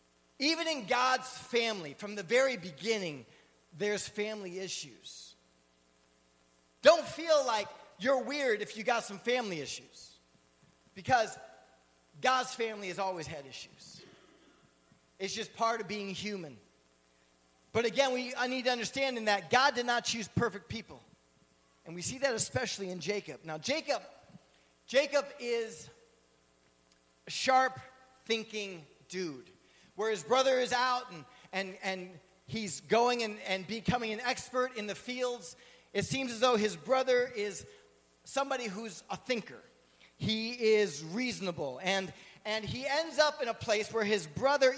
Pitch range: 155-250 Hz